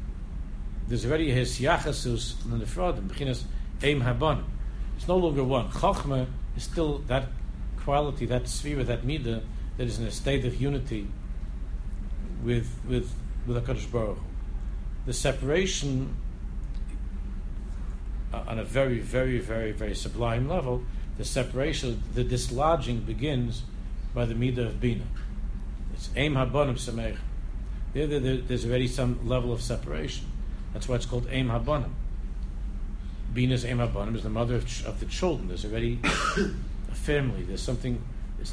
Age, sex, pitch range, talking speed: 60-79, male, 85-130 Hz, 130 wpm